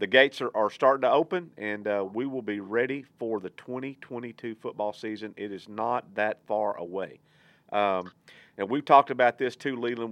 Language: English